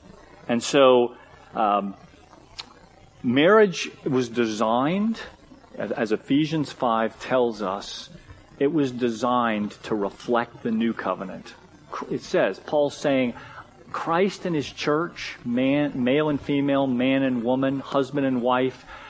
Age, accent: 40-59, American